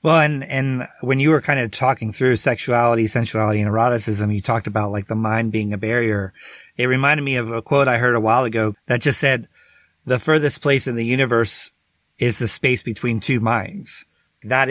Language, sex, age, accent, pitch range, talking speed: English, male, 30-49, American, 110-135 Hz, 205 wpm